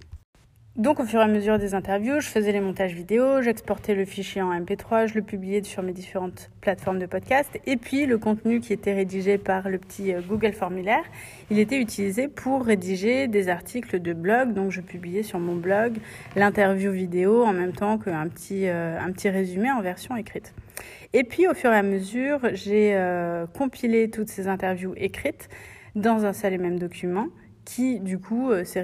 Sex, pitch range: female, 185-215 Hz